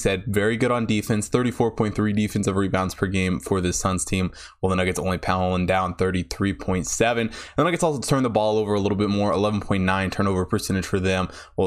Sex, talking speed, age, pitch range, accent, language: male, 200 wpm, 20-39, 100-130 Hz, American, English